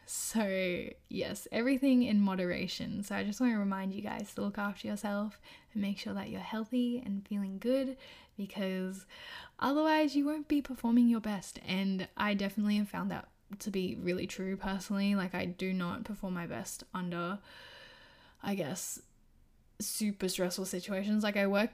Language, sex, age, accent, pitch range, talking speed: English, female, 10-29, Australian, 195-230 Hz, 170 wpm